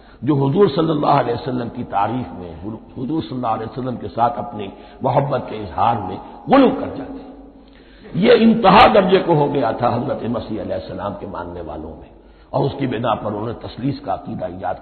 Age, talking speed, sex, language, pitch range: 60-79, 155 wpm, male, Hindi, 105-175 Hz